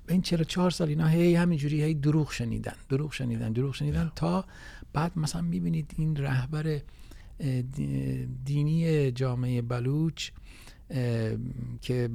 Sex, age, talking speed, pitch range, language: male, 50-69, 120 wpm, 120-145 Hz, English